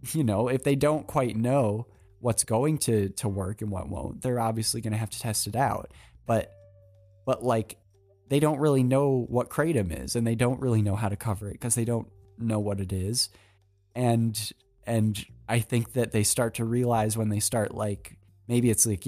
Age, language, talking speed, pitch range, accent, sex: 20-39, English, 210 wpm, 100-125 Hz, American, male